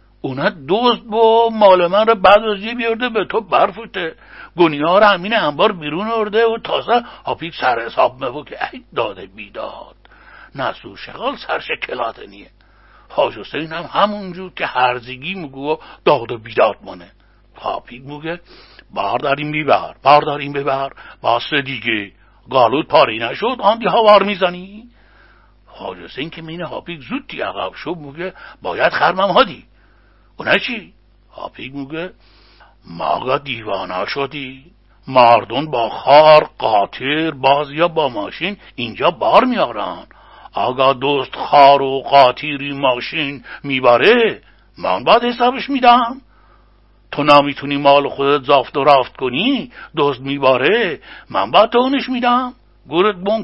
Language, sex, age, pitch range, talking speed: Persian, male, 60-79, 135-210 Hz, 130 wpm